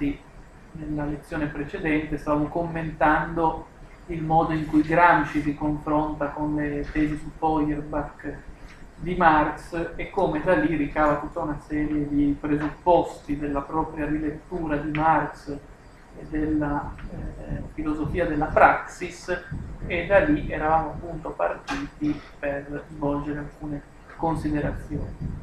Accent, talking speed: native, 120 wpm